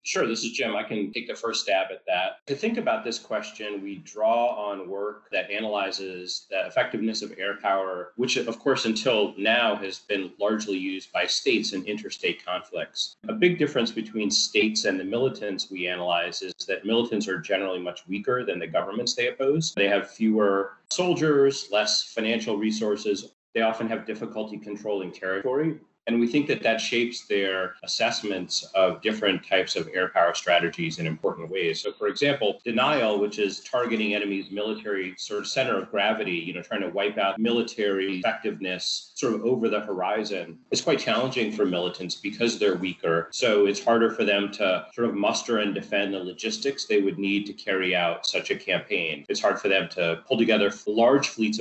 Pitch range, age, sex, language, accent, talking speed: 95-115 Hz, 30-49, male, English, American, 185 wpm